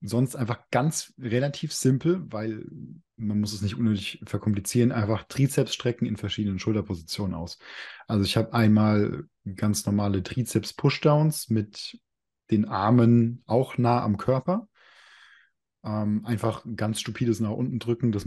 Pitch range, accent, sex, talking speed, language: 105-120 Hz, German, male, 135 wpm, German